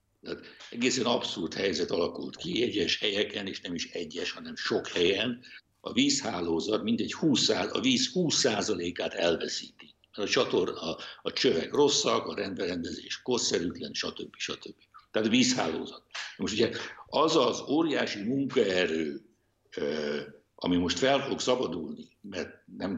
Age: 60-79